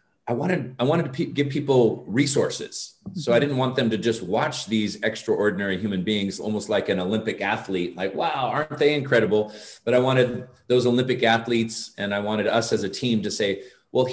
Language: English